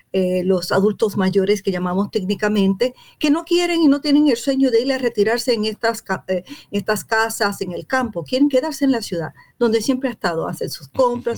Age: 50-69